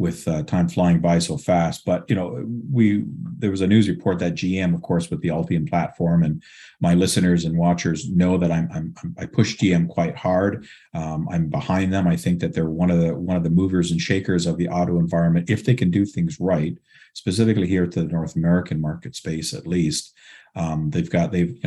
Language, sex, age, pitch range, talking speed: English, male, 40-59, 85-110 Hz, 220 wpm